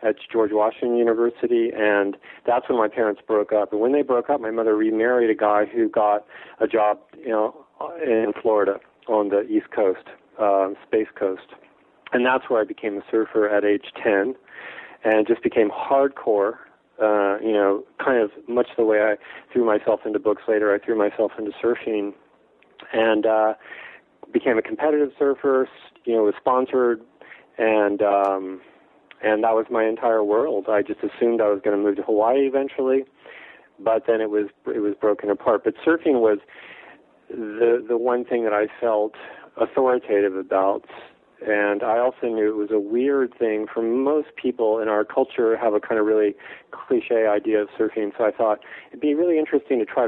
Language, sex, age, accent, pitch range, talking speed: English, male, 40-59, American, 105-120 Hz, 180 wpm